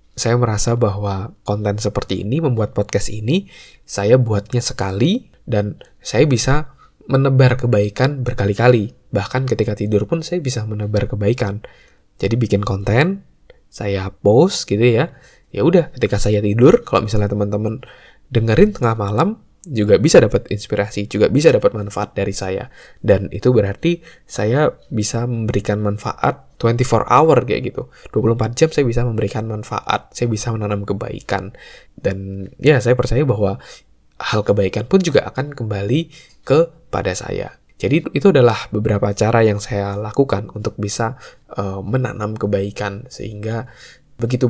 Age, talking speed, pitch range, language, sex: 20-39, 140 wpm, 100-125 Hz, Indonesian, male